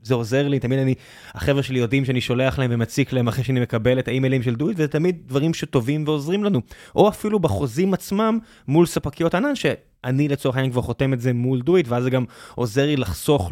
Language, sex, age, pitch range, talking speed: Hebrew, male, 20-39, 125-145 Hz, 220 wpm